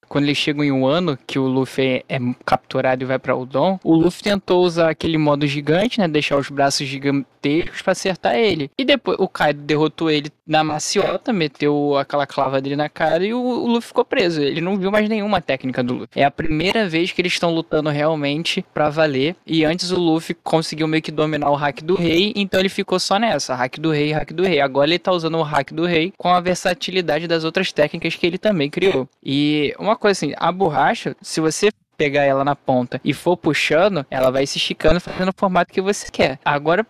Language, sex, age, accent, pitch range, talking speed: Portuguese, male, 10-29, Brazilian, 145-180 Hz, 220 wpm